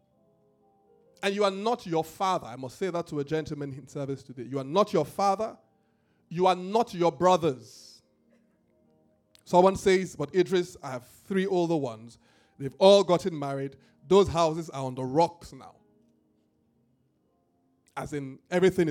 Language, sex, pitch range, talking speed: English, male, 135-195 Hz, 155 wpm